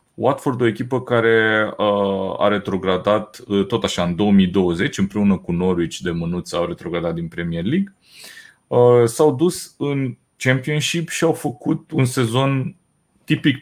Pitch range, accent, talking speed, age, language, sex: 105-140 Hz, native, 130 wpm, 30-49, Romanian, male